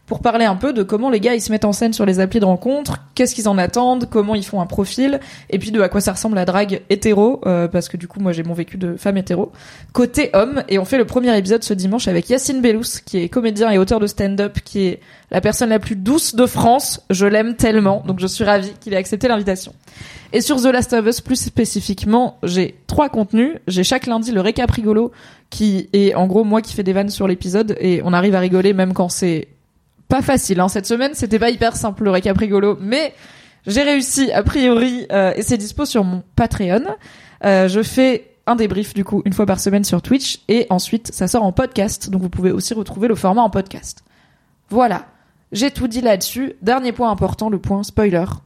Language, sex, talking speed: French, female, 235 wpm